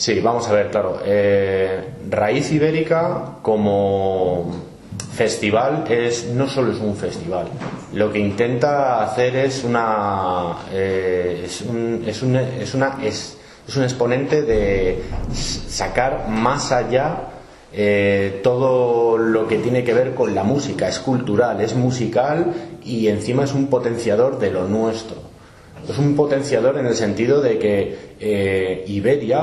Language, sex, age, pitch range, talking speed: Spanish, male, 30-49, 105-135 Hz, 120 wpm